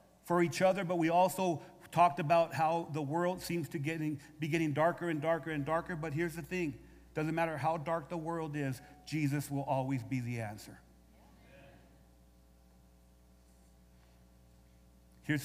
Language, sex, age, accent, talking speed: English, male, 40-59, American, 150 wpm